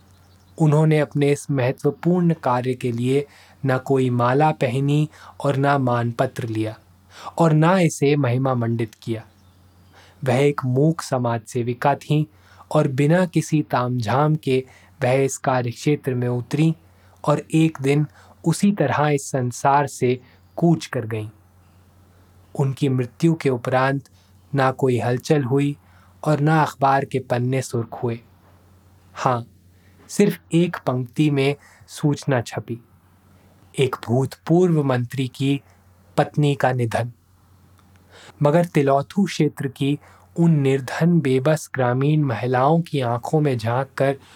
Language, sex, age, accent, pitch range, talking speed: Hindi, male, 20-39, native, 110-145 Hz, 125 wpm